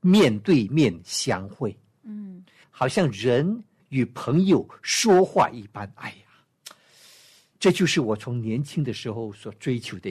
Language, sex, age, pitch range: Chinese, male, 60-79, 110-155 Hz